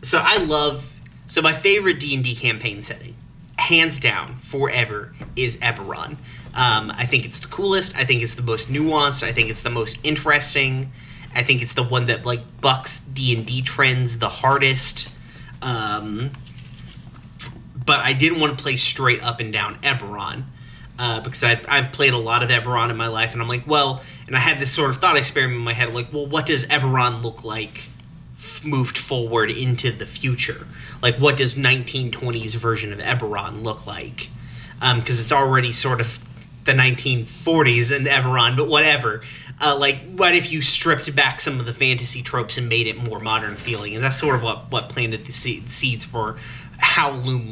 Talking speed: 185 wpm